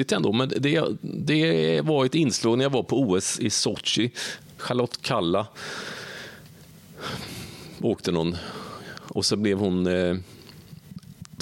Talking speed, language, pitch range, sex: 120 wpm, Swedish, 105-140 Hz, male